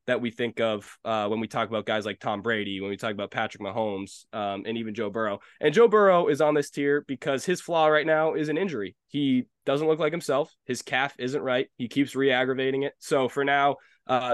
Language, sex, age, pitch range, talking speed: English, male, 20-39, 120-150 Hz, 235 wpm